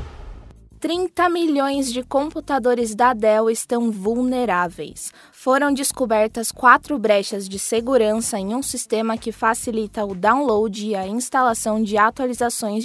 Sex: female